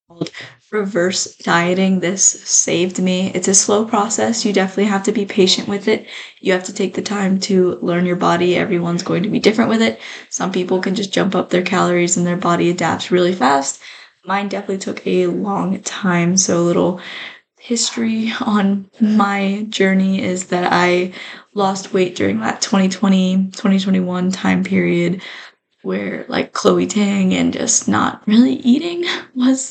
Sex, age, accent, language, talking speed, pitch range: female, 10-29, American, English, 165 wpm, 180-210 Hz